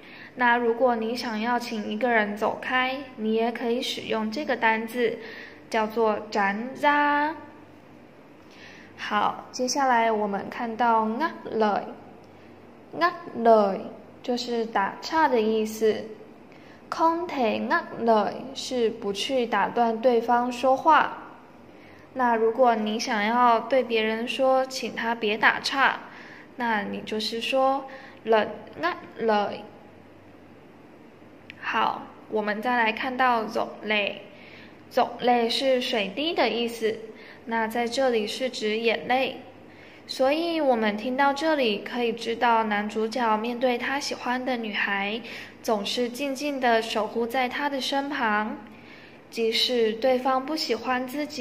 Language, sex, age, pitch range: Vietnamese, female, 10-29, 220-260 Hz